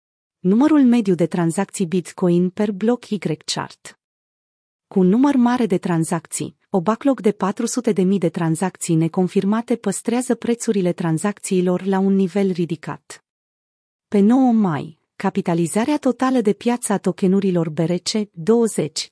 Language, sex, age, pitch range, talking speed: Romanian, female, 30-49, 175-220 Hz, 120 wpm